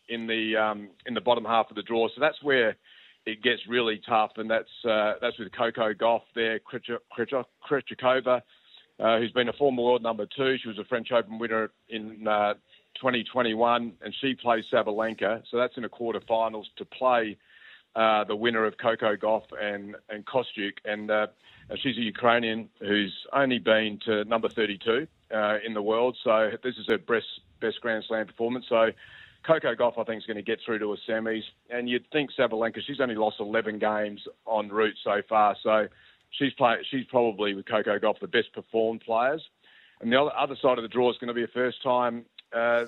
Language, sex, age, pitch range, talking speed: English, male, 40-59, 110-120 Hz, 195 wpm